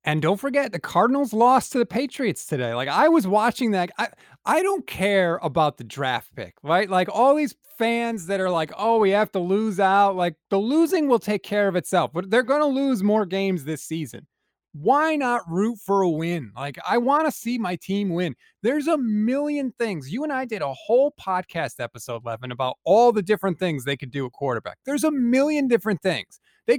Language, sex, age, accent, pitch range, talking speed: English, male, 30-49, American, 180-245 Hz, 215 wpm